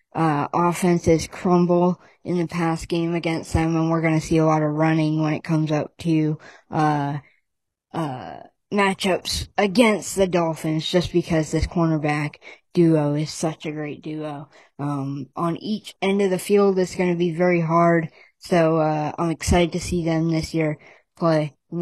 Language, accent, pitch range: English, American, 155-175 Hz